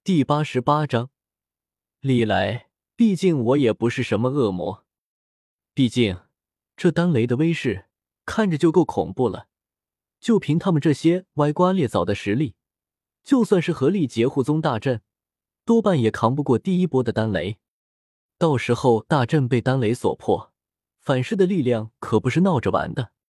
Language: Chinese